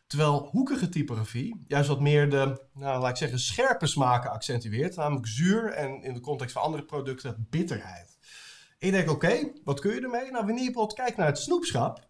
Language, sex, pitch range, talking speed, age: Dutch, male, 125-200 Hz, 200 wpm, 30-49